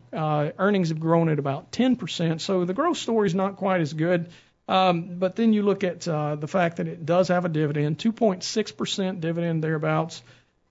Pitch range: 150-180 Hz